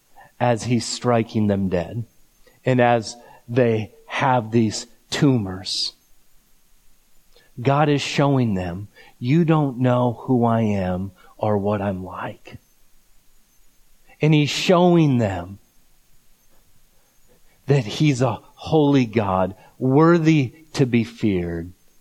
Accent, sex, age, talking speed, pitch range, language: American, male, 40-59, 105 wpm, 100-130 Hz, English